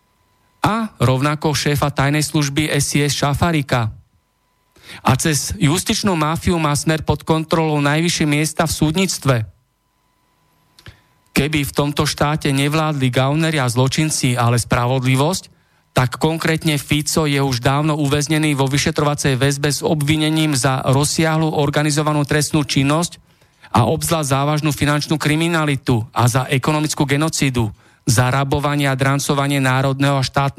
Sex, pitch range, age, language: male, 125-155 Hz, 40-59, Slovak